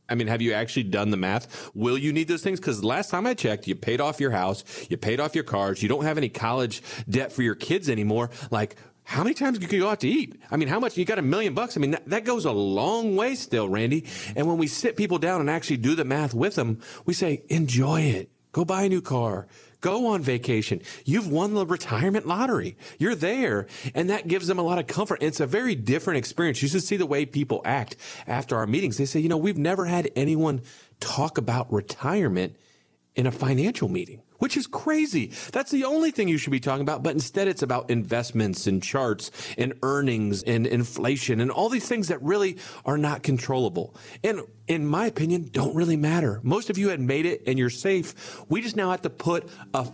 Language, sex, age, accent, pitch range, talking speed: English, male, 40-59, American, 115-180 Hz, 230 wpm